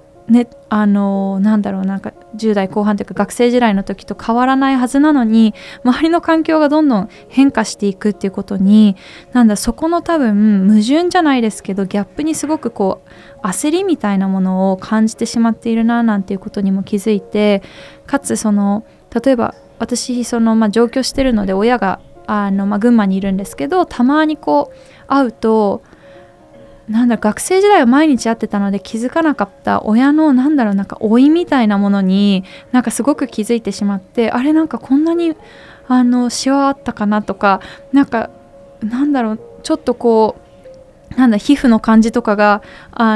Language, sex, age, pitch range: Japanese, female, 20-39, 205-255 Hz